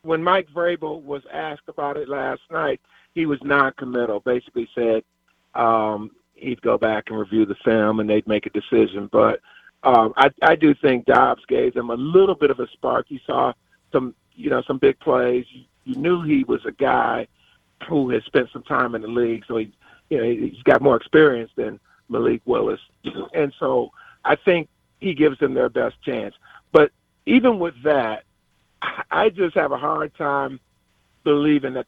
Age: 40-59